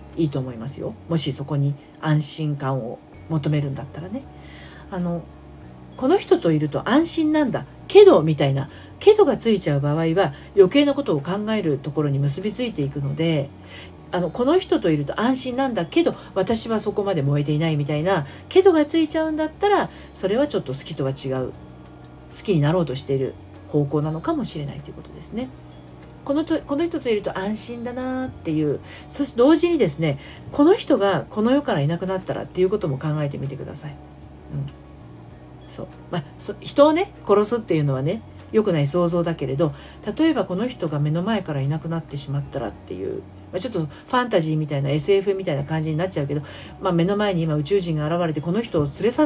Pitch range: 140-225 Hz